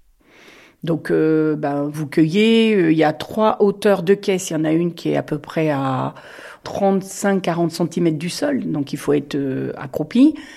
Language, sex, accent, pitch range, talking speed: French, female, French, 160-230 Hz, 195 wpm